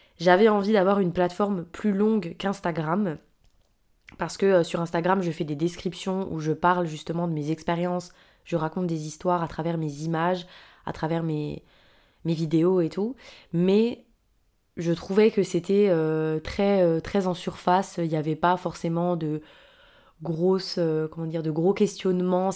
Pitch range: 165-195 Hz